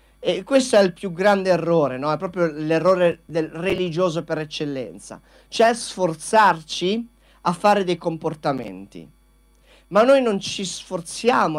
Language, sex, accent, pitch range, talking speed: Italian, male, native, 150-195 Hz, 135 wpm